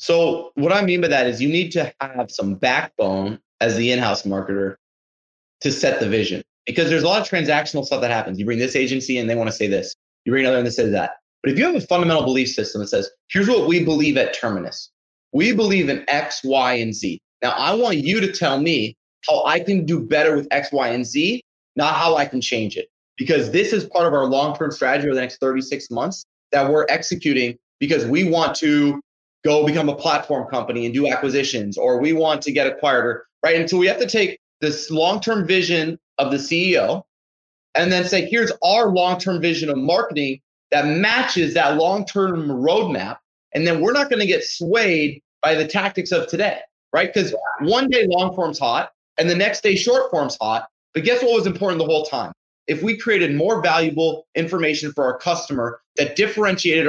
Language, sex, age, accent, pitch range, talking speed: English, male, 30-49, American, 135-185 Hz, 210 wpm